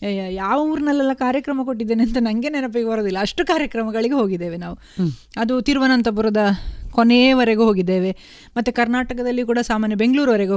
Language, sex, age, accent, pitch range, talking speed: Kannada, female, 30-49, native, 210-265 Hz, 120 wpm